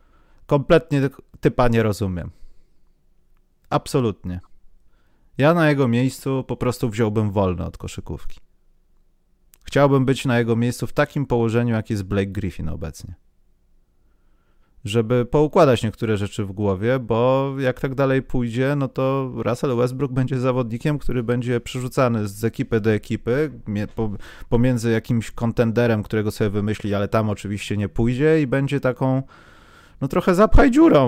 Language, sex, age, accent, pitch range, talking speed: Polish, male, 30-49, native, 105-140 Hz, 135 wpm